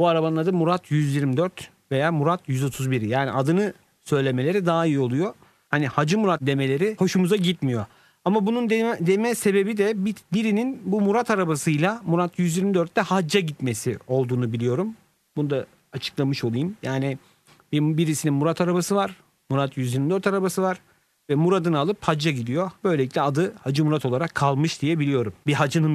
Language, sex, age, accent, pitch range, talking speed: Turkish, male, 40-59, native, 130-180 Hz, 150 wpm